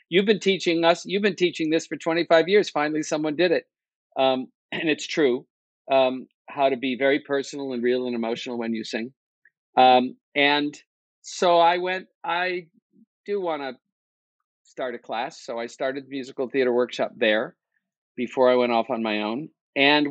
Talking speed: 180 wpm